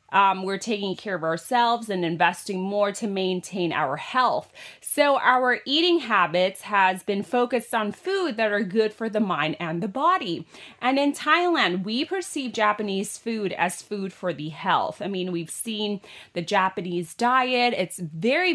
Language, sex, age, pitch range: Thai, female, 30-49, 185-245 Hz